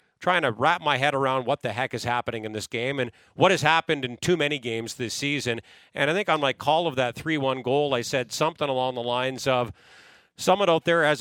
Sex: male